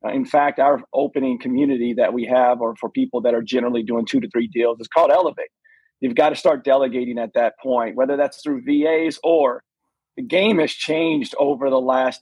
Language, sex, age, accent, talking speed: English, male, 40-59, American, 210 wpm